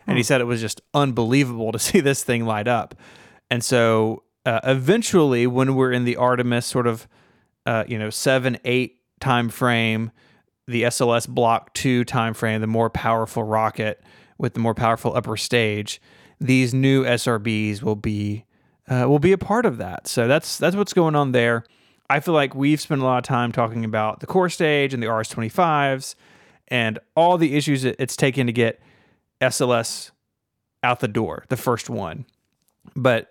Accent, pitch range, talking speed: American, 115-130 Hz, 180 wpm